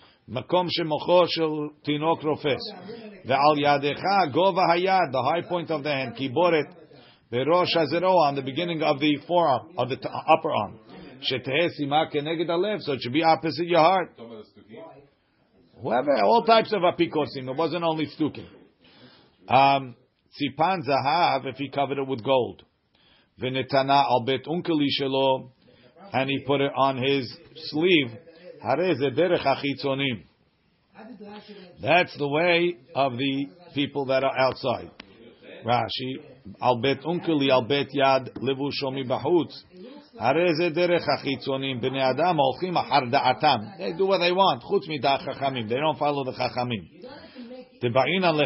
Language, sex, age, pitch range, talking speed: English, male, 50-69, 135-170 Hz, 85 wpm